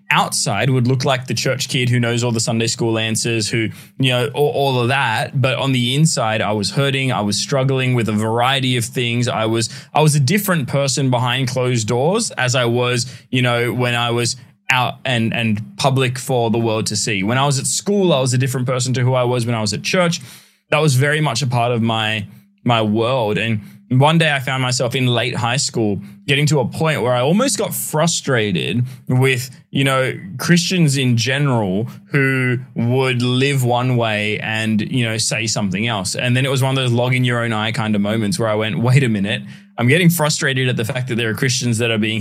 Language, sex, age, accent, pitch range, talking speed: English, male, 20-39, Australian, 115-140 Hz, 230 wpm